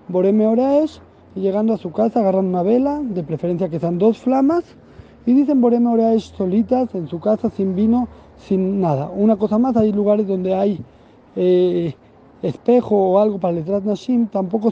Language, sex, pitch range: Spanish, male, 175-215 Hz